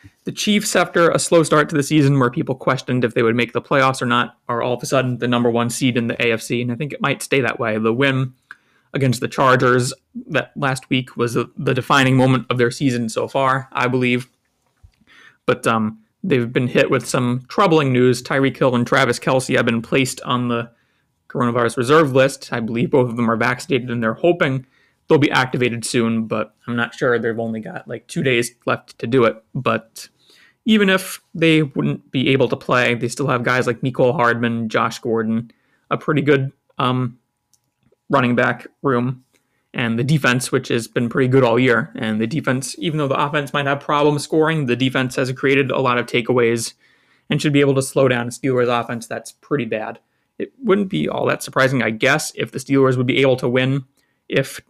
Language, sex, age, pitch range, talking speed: English, male, 20-39, 120-140 Hz, 210 wpm